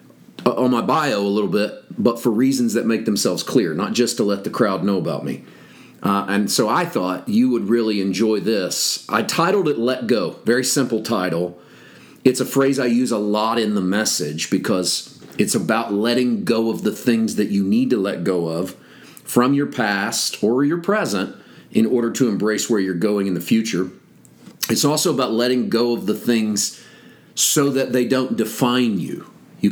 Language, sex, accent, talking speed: English, male, American, 195 wpm